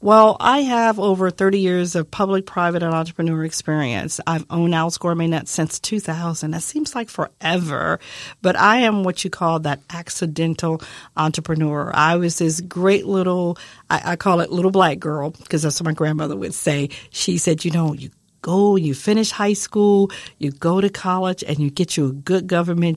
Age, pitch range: 50-69, 155-180 Hz